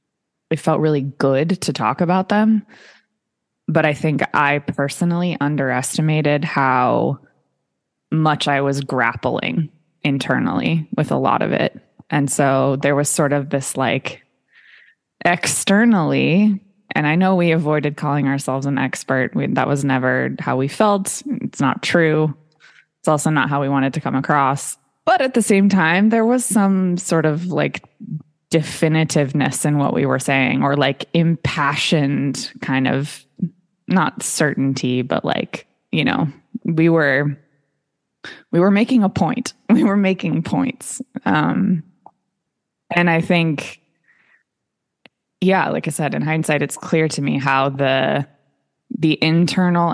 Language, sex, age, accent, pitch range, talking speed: English, female, 20-39, American, 140-180 Hz, 140 wpm